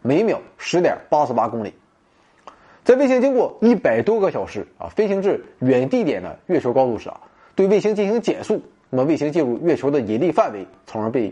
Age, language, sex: 20-39, Chinese, male